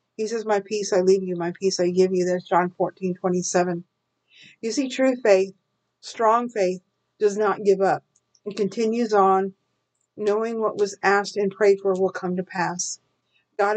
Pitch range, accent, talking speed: 185-220 Hz, American, 180 wpm